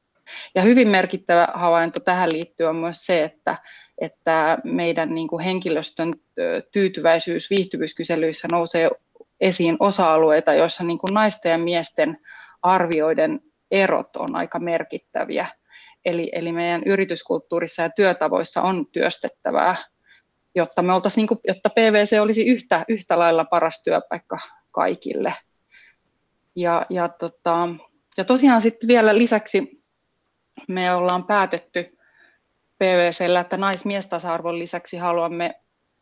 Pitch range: 170-200 Hz